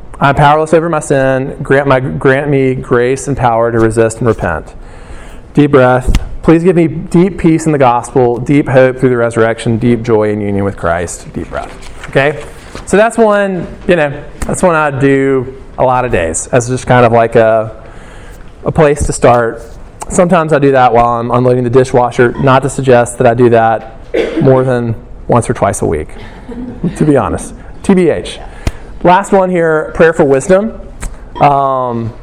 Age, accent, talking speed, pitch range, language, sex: 20-39, American, 180 wpm, 120-150 Hz, English, male